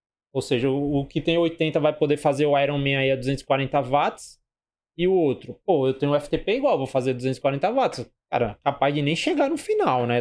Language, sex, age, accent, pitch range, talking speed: Portuguese, male, 20-39, Brazilian, 130-170 Hz, 210 wpm